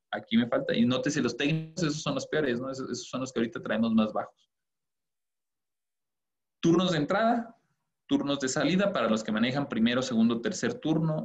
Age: 30-49